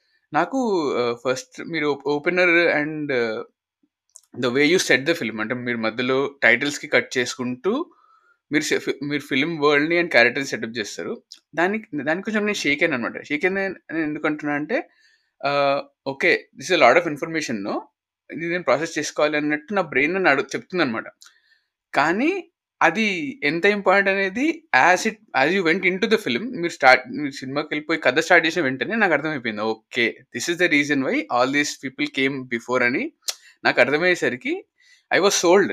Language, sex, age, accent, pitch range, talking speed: Telugu, male, 20-39, native, 130-185 Hz, 150 wpm